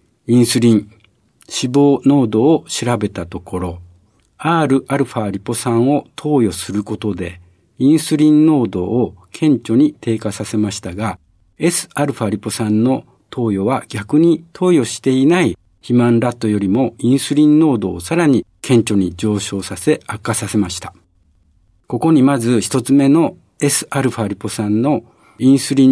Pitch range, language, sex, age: 100-145 Hz, Japanese, male, 60-79